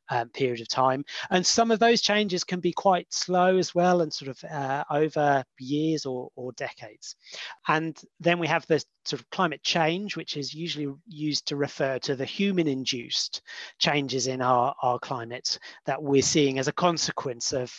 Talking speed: 180 wpm